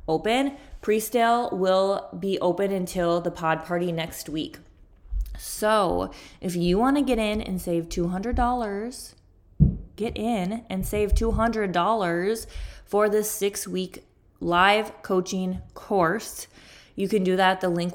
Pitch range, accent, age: 160-195 Hz, American, 20-39